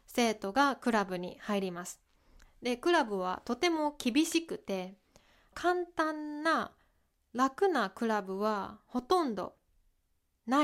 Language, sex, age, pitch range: Japanese, female, 20-39, 200-290 Hz